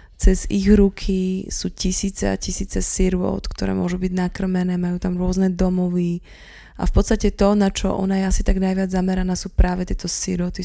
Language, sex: Slovak, female